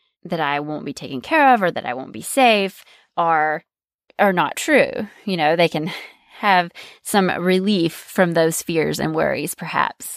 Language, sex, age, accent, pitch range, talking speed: English, female, 20-39, American, 160-200 Hz, 175 wpm